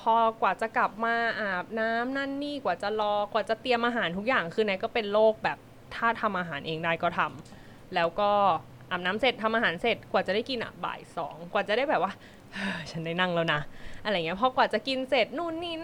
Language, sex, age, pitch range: Thai, female, 20-39, 170-235 Hz